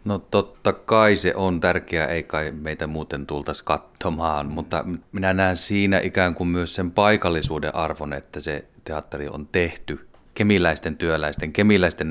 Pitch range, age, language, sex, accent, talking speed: 75-95 Hz, 30-49, Finnish, male, native, 150 wpm